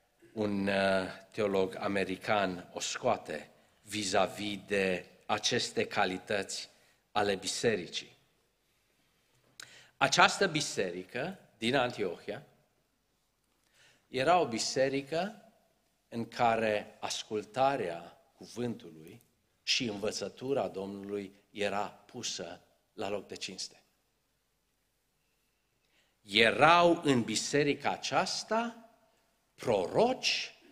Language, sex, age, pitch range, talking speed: Romanian, male, 50-69, 105-155 Hz, 70 wpm